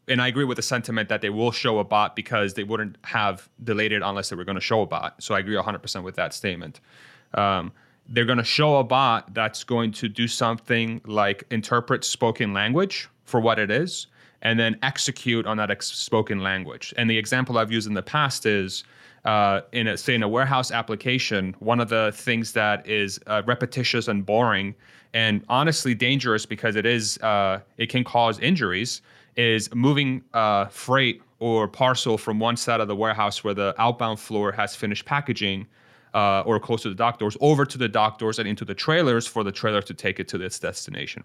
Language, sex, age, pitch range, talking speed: English, male, 30-49, 105-125 Hz, 205 wpm